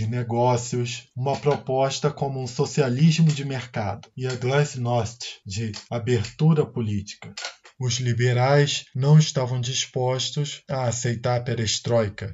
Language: Portuguese